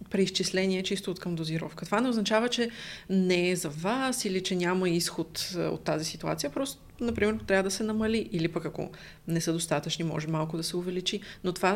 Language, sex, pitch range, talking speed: Bulgarian, female, 165-205 Hz, 200 wpm